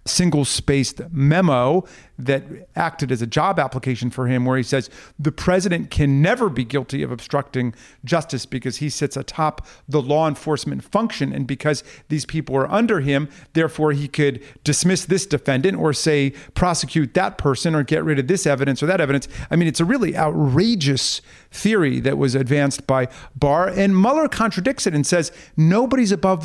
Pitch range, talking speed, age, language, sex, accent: 140-175 Hz, 175 wpm, 40-59, English, male, American